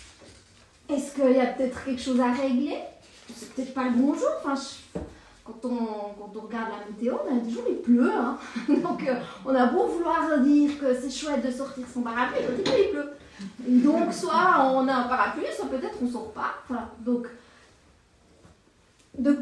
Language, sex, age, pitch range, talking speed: French, female, 40-59, 230-285 Hz, 190 wpm